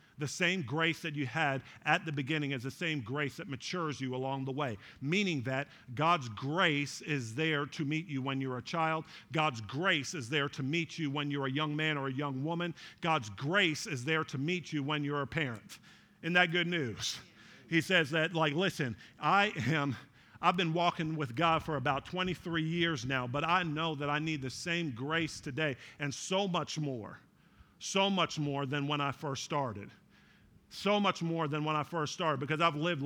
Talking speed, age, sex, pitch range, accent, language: 205 wpm, 50-69, male, 140-165 Hz, American, English